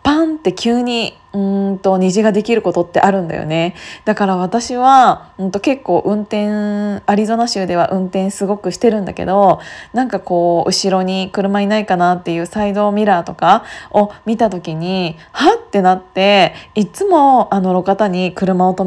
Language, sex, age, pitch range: Japanese, female, 20-39, 185-225 Hz